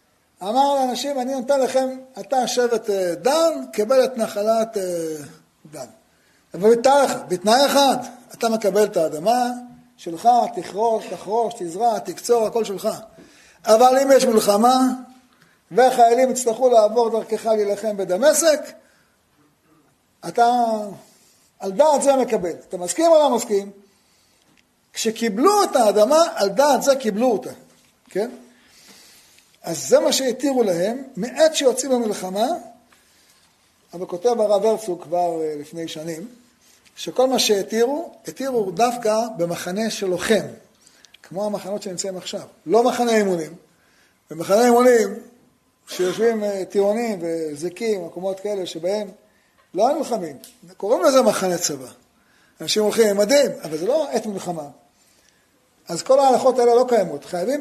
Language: Hebrew